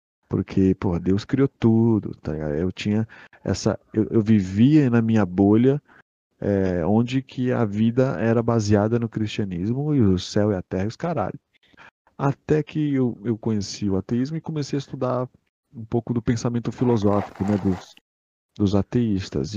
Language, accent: Portuguese, Brazilian